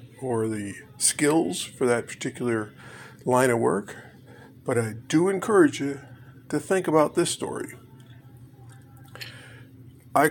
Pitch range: 125-140 Hz